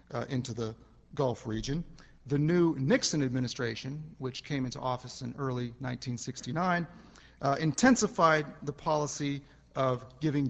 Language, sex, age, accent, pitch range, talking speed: English, male, 40-59, American, 125-160 Hz, 125 wpm